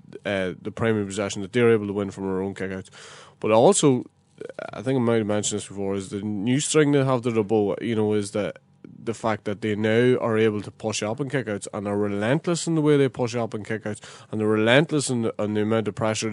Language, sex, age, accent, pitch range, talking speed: English, male, 20-39, Irish, 100-110 Hz, 255 wpm